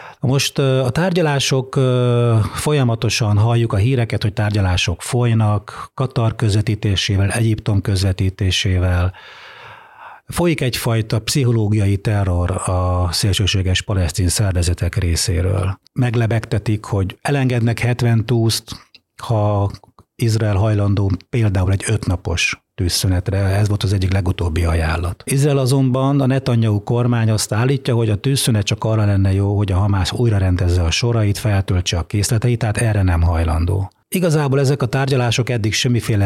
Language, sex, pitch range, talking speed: Hungarian, male, 95-120 Hz, 120 wpm